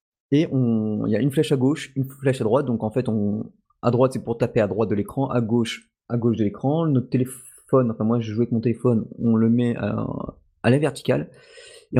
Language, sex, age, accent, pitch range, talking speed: French, male, 20-39, French, 110-130 Hz, 240 wpm